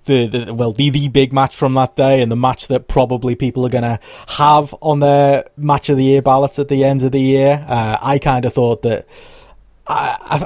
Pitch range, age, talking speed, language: 120-145 Hz, 20-39, 210 wpm, English